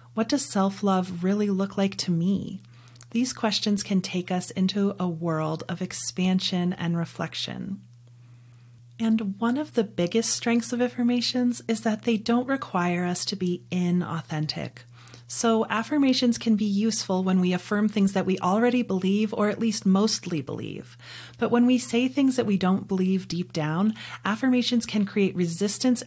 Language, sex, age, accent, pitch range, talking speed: English, female, 30-49, American, 175-220 Hz, 160 wpm